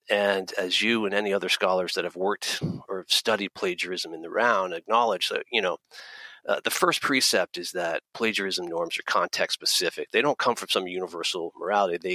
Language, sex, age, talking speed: English, male, 40-59, 195 wpm